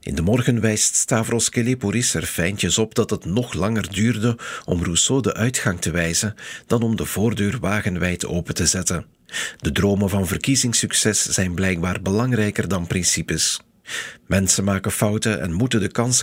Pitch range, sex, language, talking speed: 90-115 Hz, male, Dutch, 160 wpm